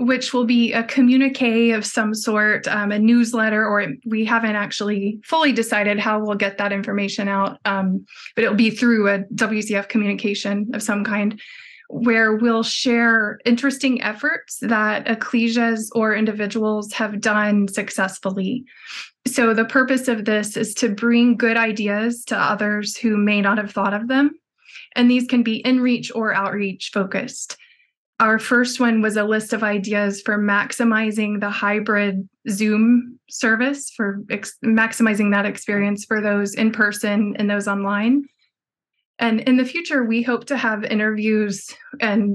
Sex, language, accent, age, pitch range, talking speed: female, English, American, 20-39, 205-235 Hz, 155 wpm